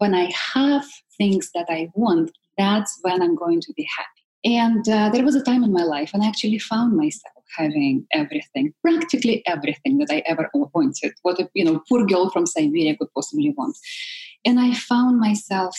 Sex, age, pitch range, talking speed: female, 20-39, 185-275 Hz, 185 wpm